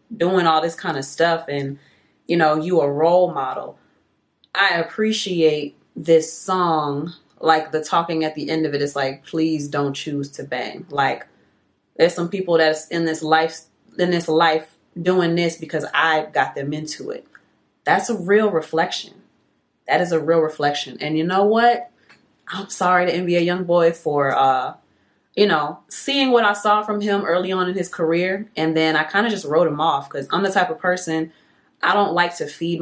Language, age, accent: English, 30-49, American